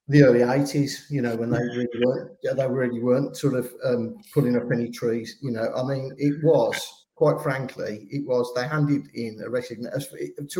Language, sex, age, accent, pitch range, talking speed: English, male, 40-59, British, 120-145 Hz, 200 wpm